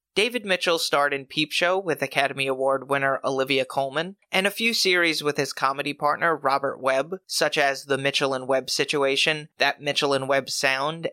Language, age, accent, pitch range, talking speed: English, 30-49, American, 140-180 Hz, 185 wpm